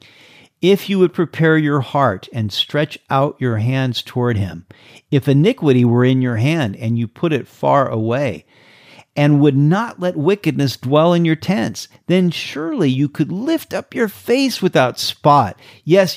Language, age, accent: English, 50-69, American